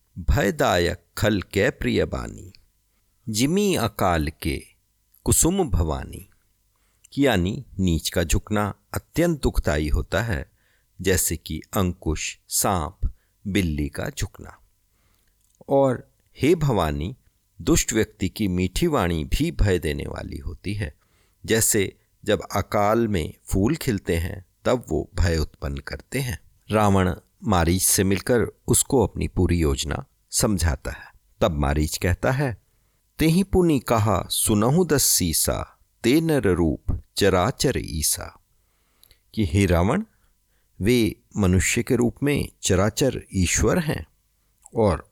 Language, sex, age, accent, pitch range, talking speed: Hindi, male, 50-69, native, 85-110 Hz, 120 wpm